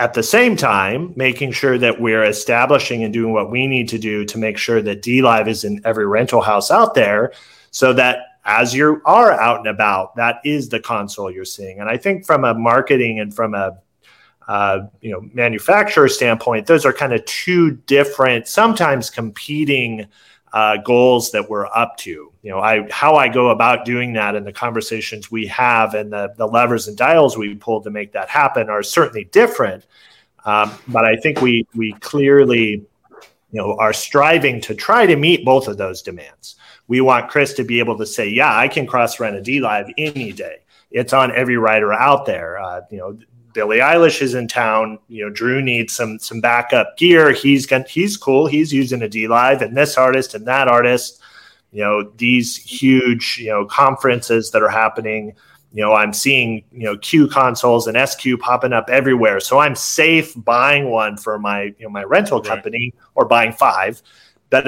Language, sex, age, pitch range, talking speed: English, male, 30-49, 110-130 Hz, 200 wpm